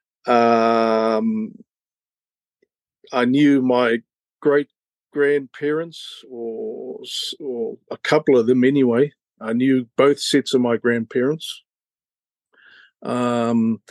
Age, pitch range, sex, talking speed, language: 50-69, 115-140 Hz, male, 85 wpm, English